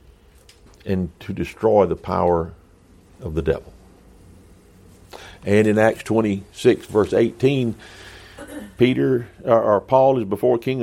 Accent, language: American, English